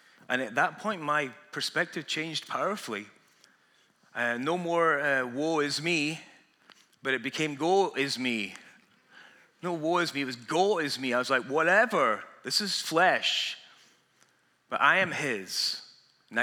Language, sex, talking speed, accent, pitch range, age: English, male, 155 wpm, British, 115-155 Hz, 30-49